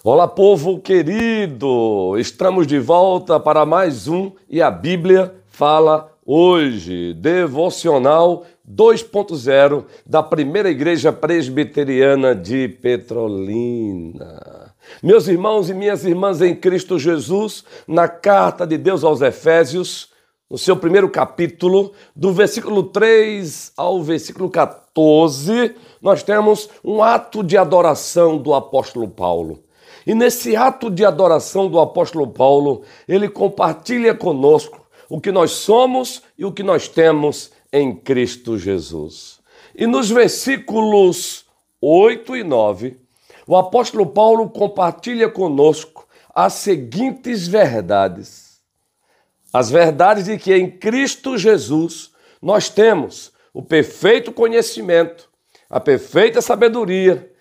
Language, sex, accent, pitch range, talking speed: Portuguese, male, Brazilian, 155-210 Hz, 110 wpm